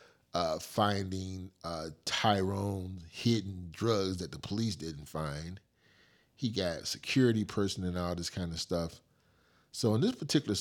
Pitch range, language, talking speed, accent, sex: 80-100 Hz, English, 145 wpm, American, male